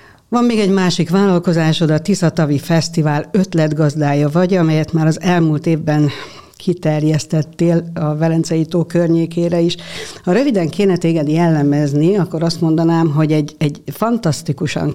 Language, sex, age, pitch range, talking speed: Hungarian, female, 60-79, 150-175 Hz, 130 wpm